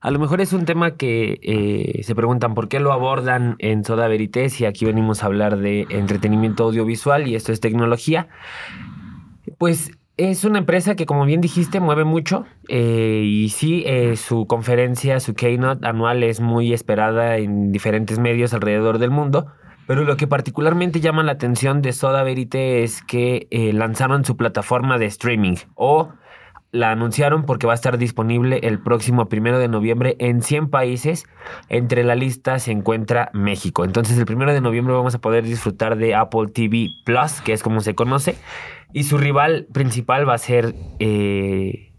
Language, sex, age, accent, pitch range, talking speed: Spanish, male, 20-39, Mexican, 115-140 Hz, 175 wpm